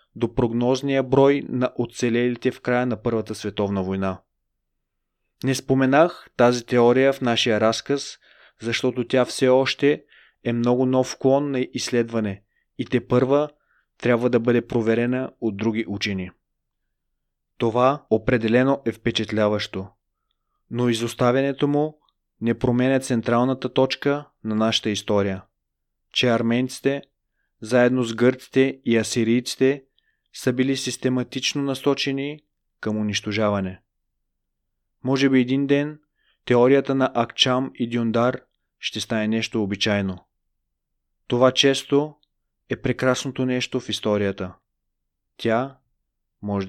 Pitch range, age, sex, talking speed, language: 110-135 Hz, 30-49, male, 110 wpm, Bulgarian